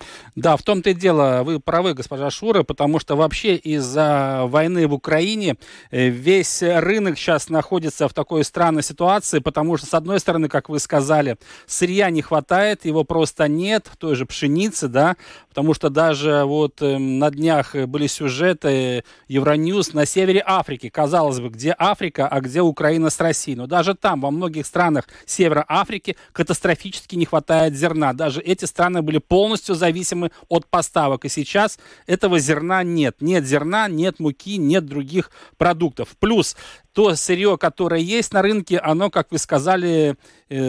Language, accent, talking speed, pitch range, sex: Russian, native, 160 wpm, 150-185 Hz, male